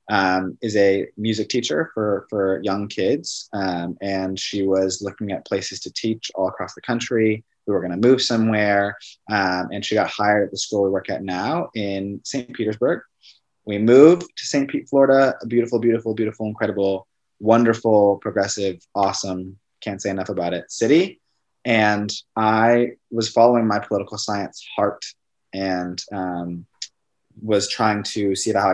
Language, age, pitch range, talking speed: English, 20-39, 95-115 Hz, 160 wpm